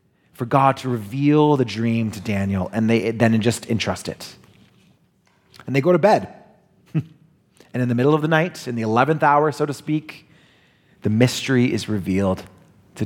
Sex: male